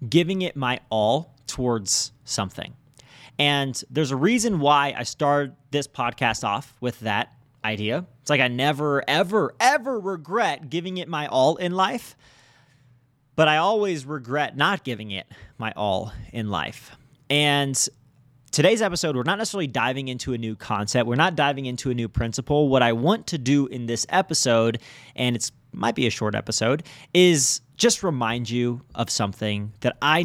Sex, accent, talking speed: male, American, 165 wpm